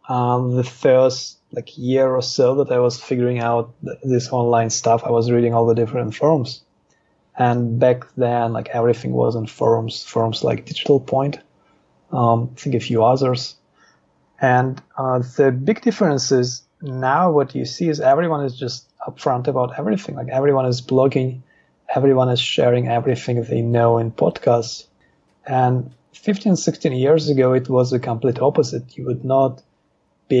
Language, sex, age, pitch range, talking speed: English, male, 30-49, 115-130 Hz, 165 wpm